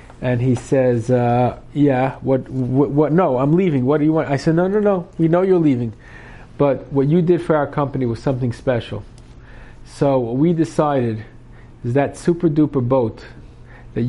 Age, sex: 50-69, male